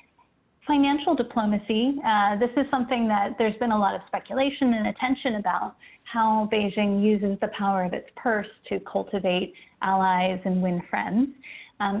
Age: 30-49